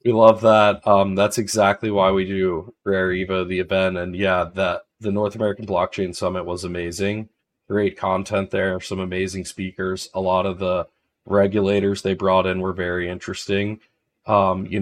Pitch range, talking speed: 90-100 Hz, 170 wpm